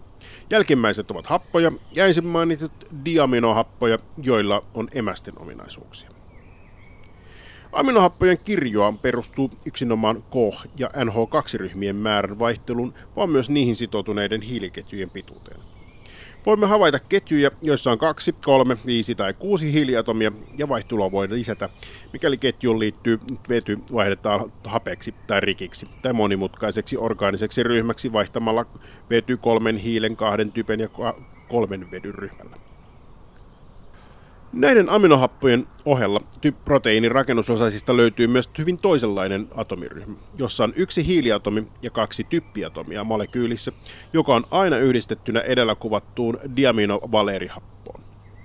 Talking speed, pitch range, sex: 105 wpm, 100-125 Hz, male